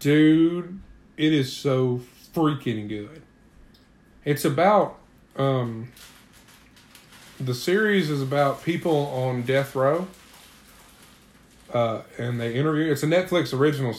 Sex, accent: male, American